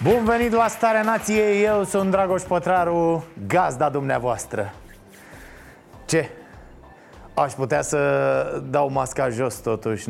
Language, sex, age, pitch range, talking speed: Romanian, male, 30-49, 135-175 Hz, 115 wpm